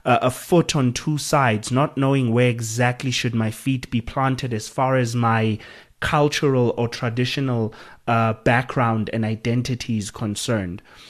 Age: 30-49